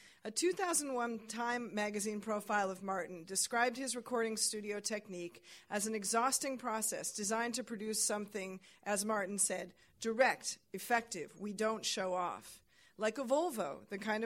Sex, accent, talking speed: female, American, 145 wpm